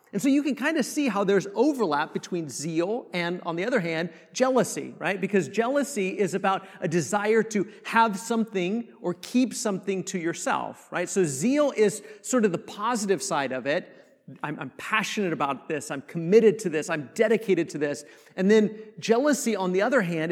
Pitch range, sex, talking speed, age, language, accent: 170-225 Hz, male, 190 wpm, 40-59, English, American